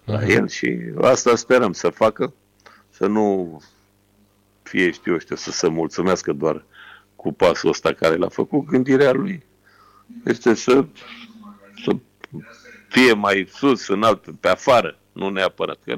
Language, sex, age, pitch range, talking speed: Romanian, male, 50-69, 95-110 Hz, 135 wpm